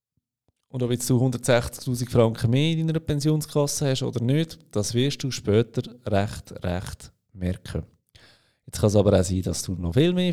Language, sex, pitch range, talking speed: German, male, 100-125 Hz, 175 wpm